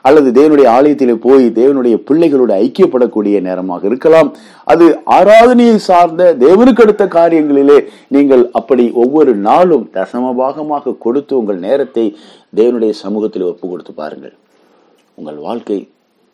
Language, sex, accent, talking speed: Tamil, male, native, 110 wpm